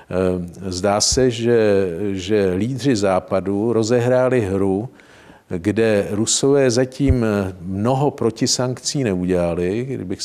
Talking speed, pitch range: 95 wpm, 95-115 Hz